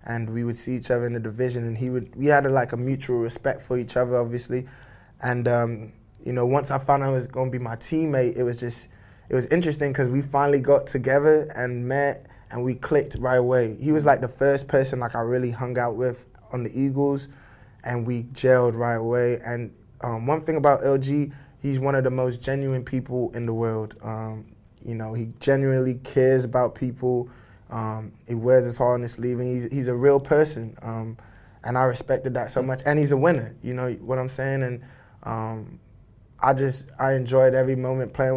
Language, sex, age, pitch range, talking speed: English, male, 20-39, 120-135 Hz, 215 wpm